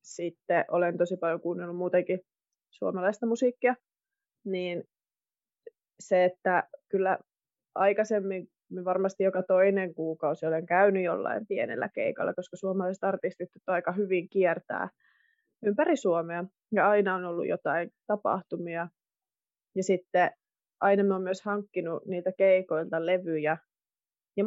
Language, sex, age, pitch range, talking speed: Finnish, female, 20-39, 175-215 Hz, 115 wpm